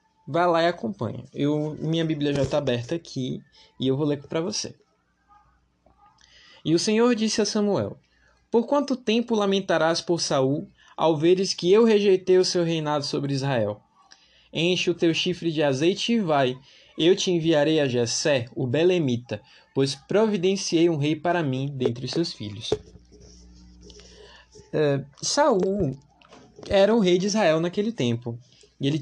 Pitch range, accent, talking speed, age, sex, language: 140-195 Hz, Brazilian, 155 wpm, 20-39, male, Portuguese